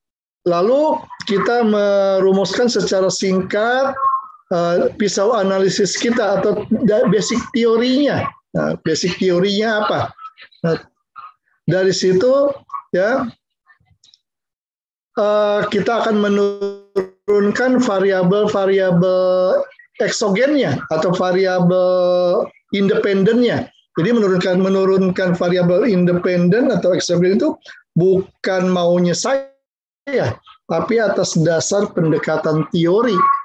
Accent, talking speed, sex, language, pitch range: native, 85 wpm, male, Indonesian, 175-225 Hz